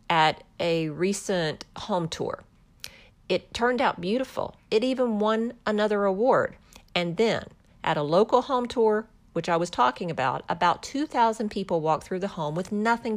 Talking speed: 160 wpm